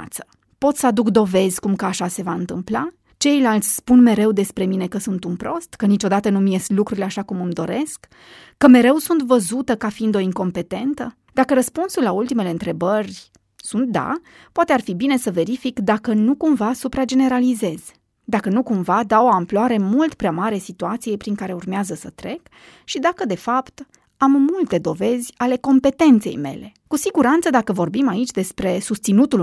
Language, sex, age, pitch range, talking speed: Romanian, female, 20-39, 200-275 Hz, 175 wpm